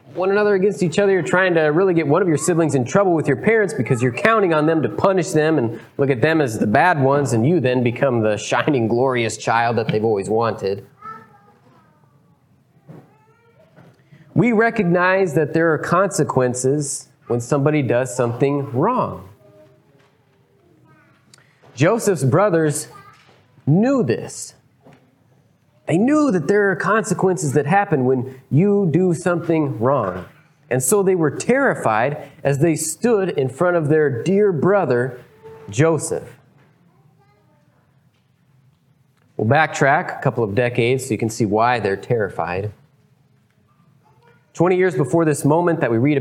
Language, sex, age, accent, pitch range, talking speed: English, male, 30-49, American, 130-165 Hz, 145 wpm